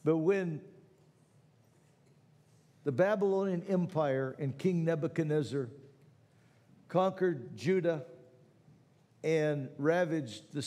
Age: 60-79